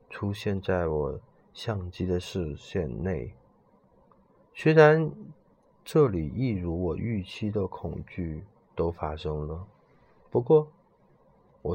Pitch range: 90-125 Hz